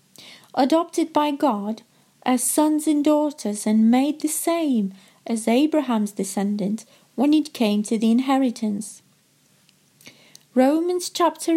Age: 30-49